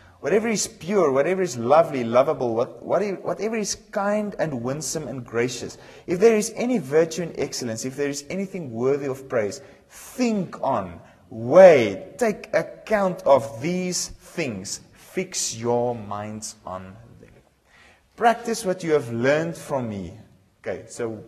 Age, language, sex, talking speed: 30-49, English, male, 140 wpm